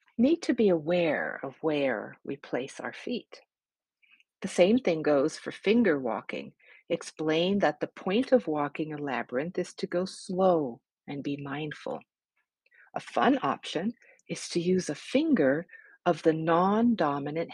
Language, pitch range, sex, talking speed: English, 155-235 Hz, female, 145 wpm